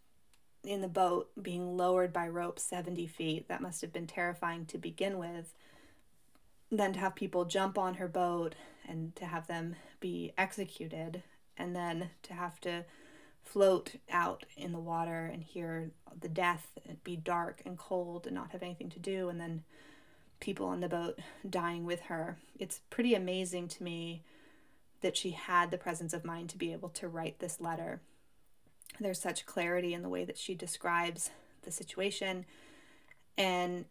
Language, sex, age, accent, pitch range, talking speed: English, female, 20-39, American, 165-190 Hz, 170 wpm